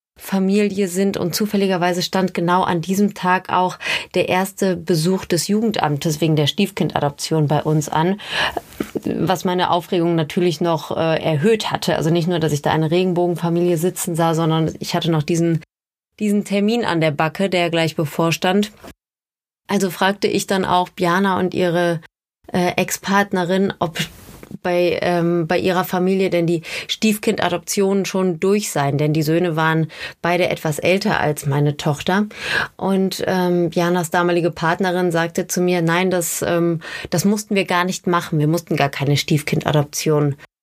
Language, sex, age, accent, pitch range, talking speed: German, female, 20-39, German, 165-190 Hz, 155 wpm